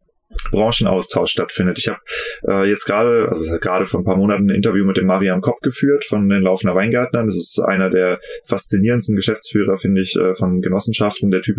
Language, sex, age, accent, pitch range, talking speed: German, male, 20-39, German, 95-125 Hz, 190 wpm